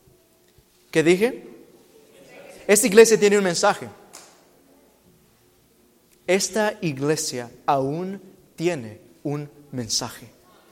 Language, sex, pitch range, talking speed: Spanish, male, 145-185 Hz, 75 wpm